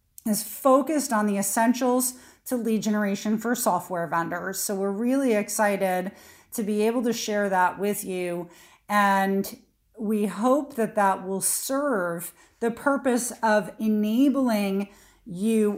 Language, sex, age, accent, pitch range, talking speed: English, female, 40-59, American, 195-235 Hz, 135 wpm